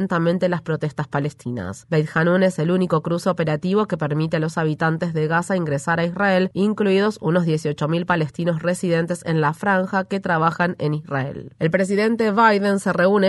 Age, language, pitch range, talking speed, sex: 20-39, Spanish, 165-195 Hz, 165 wpm, female